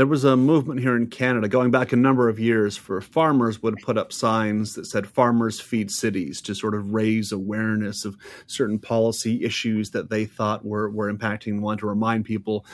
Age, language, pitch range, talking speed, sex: 30-49, English, 110-130 Hz, 205 wpm, male